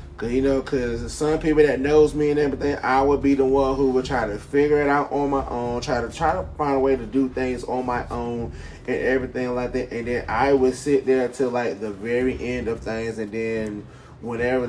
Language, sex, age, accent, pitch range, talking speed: English, male, 20-39, American, 110-130 Hz, 235 wpm